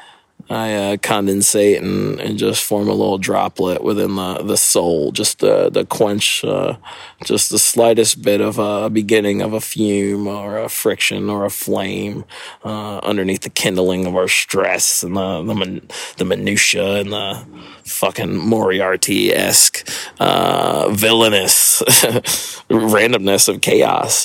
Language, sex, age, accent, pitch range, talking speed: English, male, 20-39, American, 100-120 Hz, 140 wpm